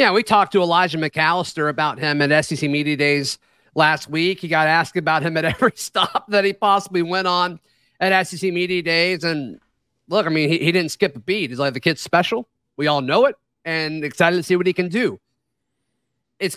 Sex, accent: male, American